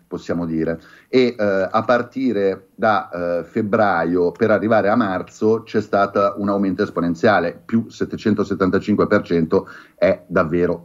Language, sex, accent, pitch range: Italian, male, native, 90-110 Hz